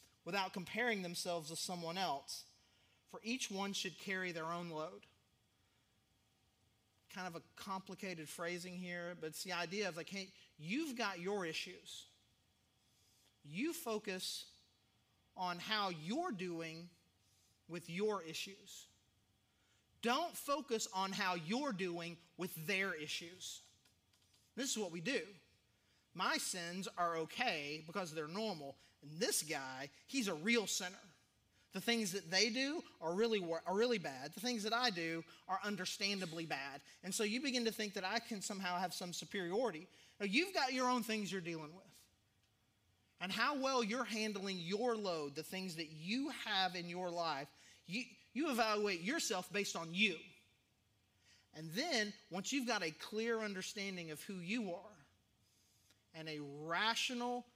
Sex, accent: male, American